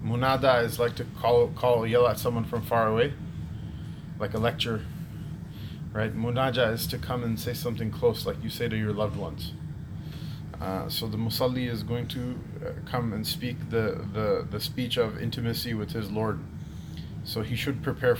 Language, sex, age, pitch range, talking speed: English, male, 20-39, 115-140 Hz, 180 wpm